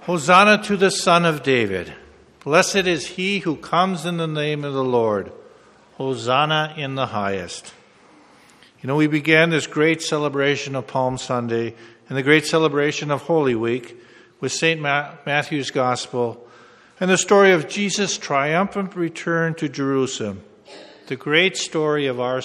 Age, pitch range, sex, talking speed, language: 50-69, 130-175 Hz, male, 150 wpm, English